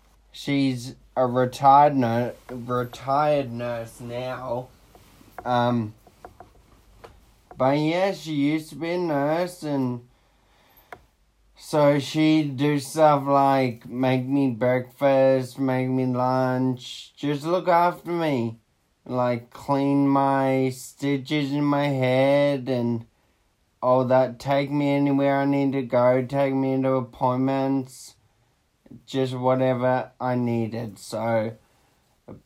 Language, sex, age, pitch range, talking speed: English, male, 20-39, 125-140 Hz, 110 wpm